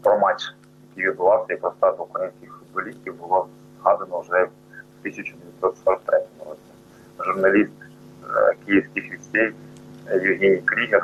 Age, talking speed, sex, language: 30-49, 110 wpm, male, Ukrainian